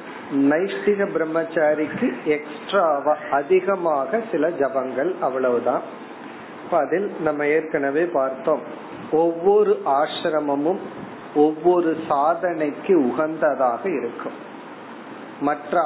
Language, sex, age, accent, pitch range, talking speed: Tamil, male, 40-59, native, 140-180 Hz, 55 wpm